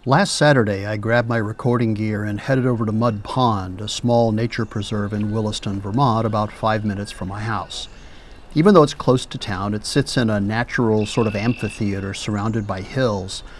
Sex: male